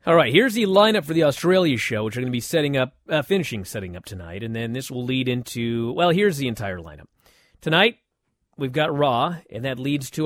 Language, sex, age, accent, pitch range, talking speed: English, male, 30-49, American, 115-160 Hz, 235 wpm